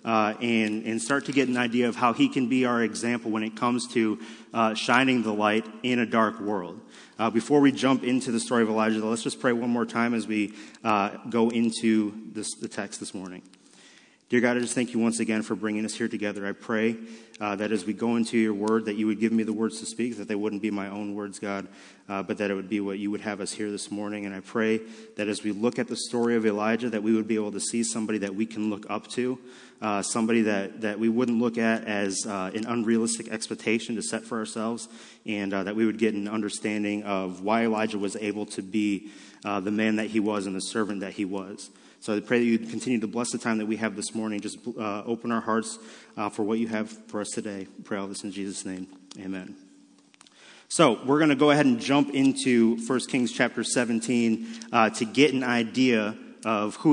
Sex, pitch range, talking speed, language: male, 105-115 Hz, 240 wpm, English